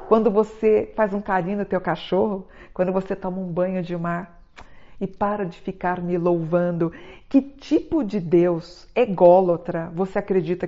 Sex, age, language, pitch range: female, 50-69, Portuguese, 175-210 Hz